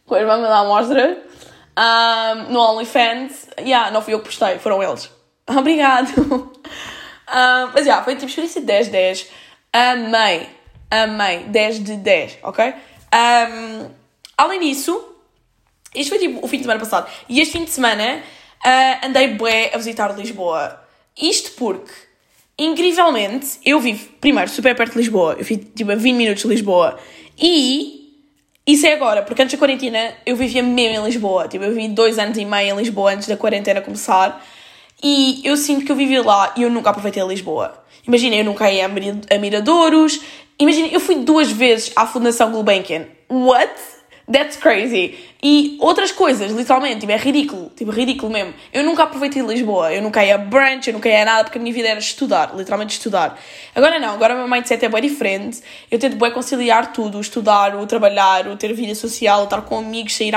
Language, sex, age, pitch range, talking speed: Portuguese, female, 10-29, 215-280 Hz, 185 wpm